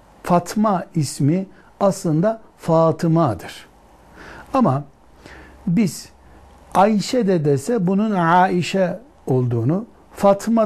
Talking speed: 75 wpm